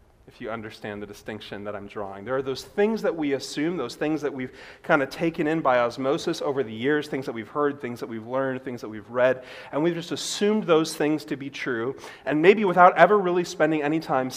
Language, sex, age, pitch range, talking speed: English, male, 30-49, 125-165 Hz, 240 wpm